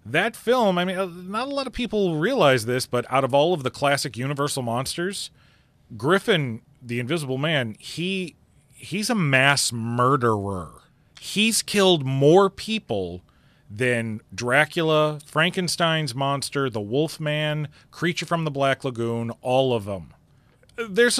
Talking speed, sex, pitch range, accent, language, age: 135 wpm, male, 120-170 Hz, American, English, 30-49